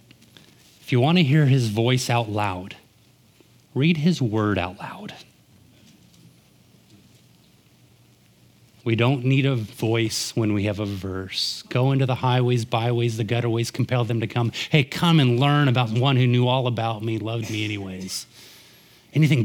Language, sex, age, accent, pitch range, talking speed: English, male, 30-49, American, 120-170 Hz, 150 wpm